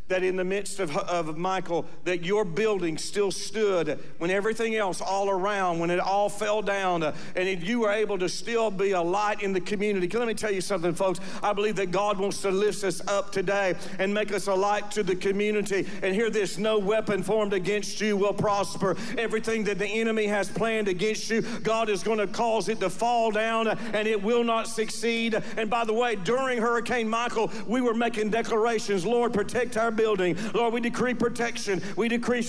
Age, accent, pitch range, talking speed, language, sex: 50-69, American, 200-230 Hz, 210 wpm, English, male